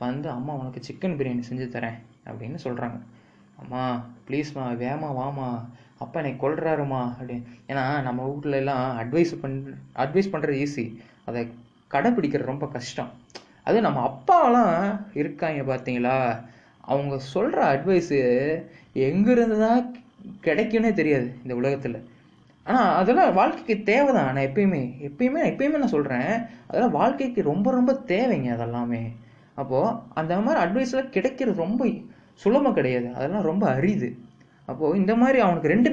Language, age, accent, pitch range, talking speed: Tamil, 20-39, native, 125-200 Hz, 130 wpm